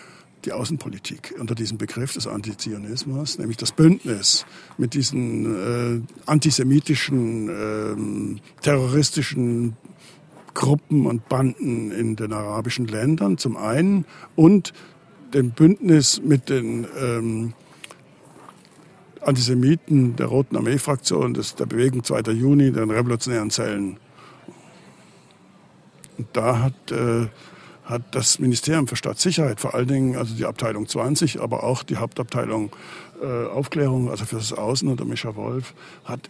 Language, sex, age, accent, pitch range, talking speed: German, male, 60-79, German, 110-135 Hz, 120 wpm